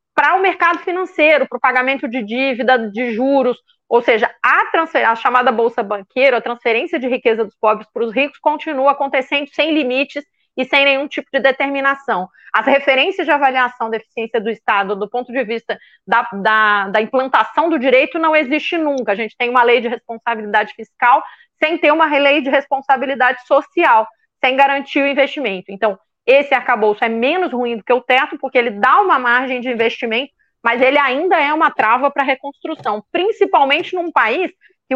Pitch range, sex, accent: 230-290 Hz, female, Brazilian